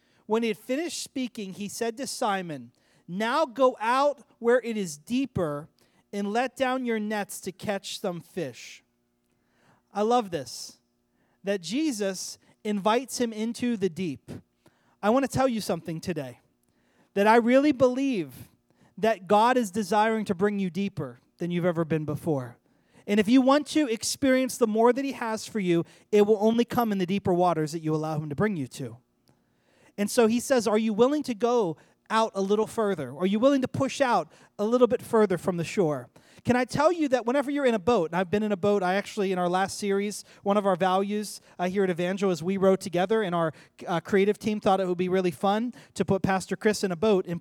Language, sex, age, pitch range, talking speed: English, male, 30-49, 180-230 Hz, 210 wpm